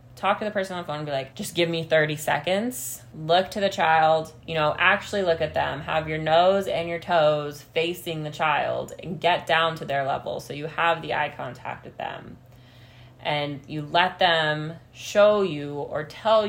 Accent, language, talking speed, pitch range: American, English, 205 wpm, 145-180 Hz